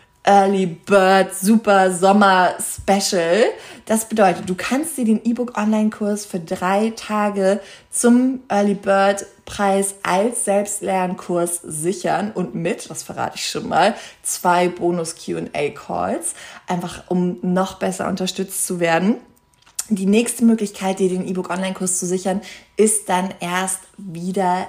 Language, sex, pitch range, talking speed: German, female, 175-205 Hz, 125 wpm